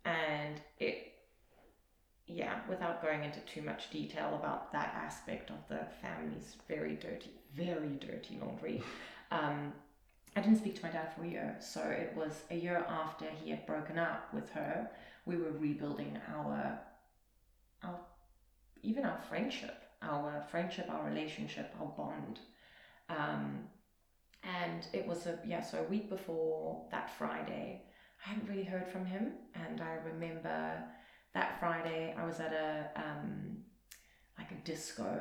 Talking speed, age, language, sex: 150 wpm, 30-49, English, female